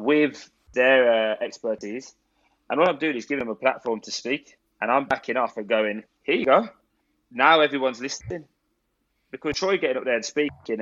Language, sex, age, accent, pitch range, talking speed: English, male, 20-39, British, 115-160 Hz, 190 wpm